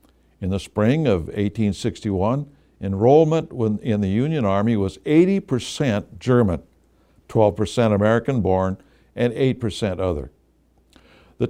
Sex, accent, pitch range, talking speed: male, American, 95-125 Hz, 100 wpm